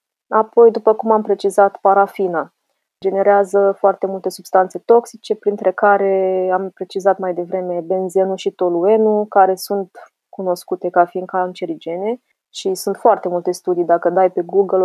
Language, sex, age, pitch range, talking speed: Romanian, female, 20-39, 180-215 Hz, 140 wpm